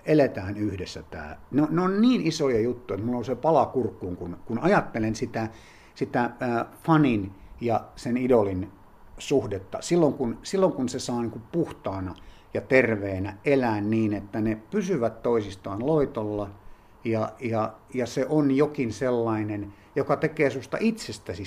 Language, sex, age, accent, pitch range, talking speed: Finnish, male, 50-69, native, 105-140 Hz, 150 wpm